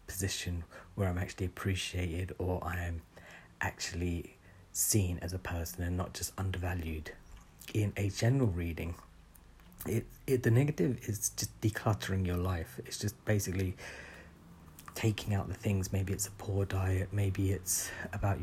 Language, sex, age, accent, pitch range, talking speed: English, male, 40-59, British, 90-105 Hz, 145 wpm